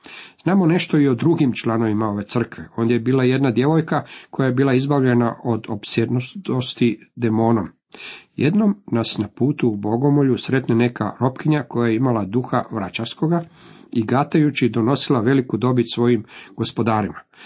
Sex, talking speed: male, 140 wpm